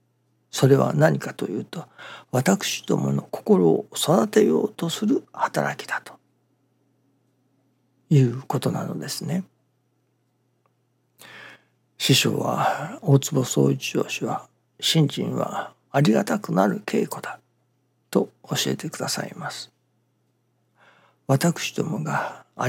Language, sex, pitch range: Japanese, male, 120-160 Hz